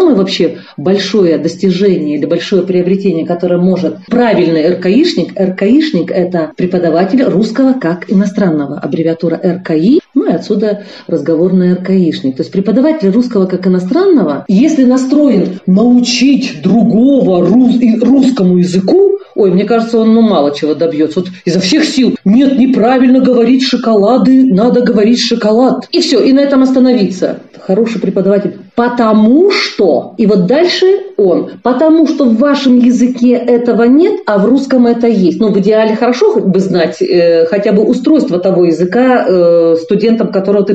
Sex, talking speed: female, 145 wpm